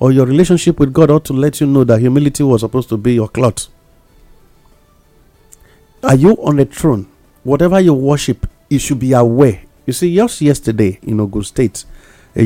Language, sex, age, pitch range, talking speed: English, male, 50-69, 105-140 Hz, 185 wpm